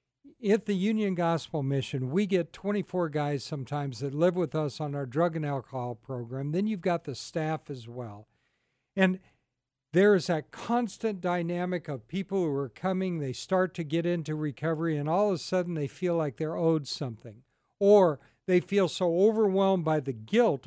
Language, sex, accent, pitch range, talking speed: English, male, American, 145-195 Hz, 185 wpm